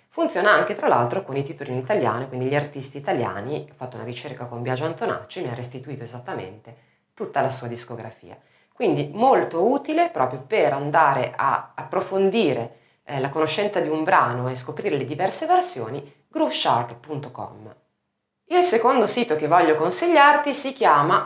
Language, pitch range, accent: Italian, 125-190 Hz, native